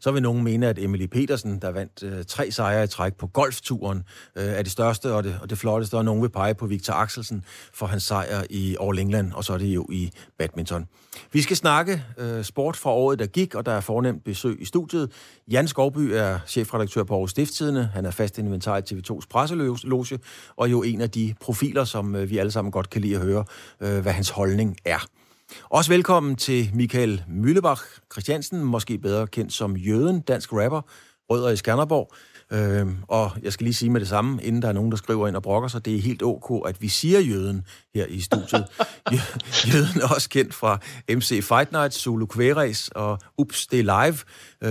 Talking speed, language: 210 wpm, Danish